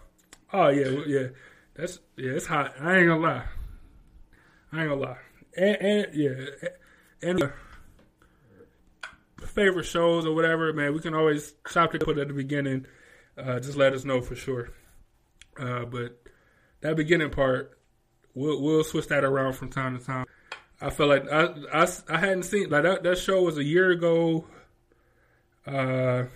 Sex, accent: male, American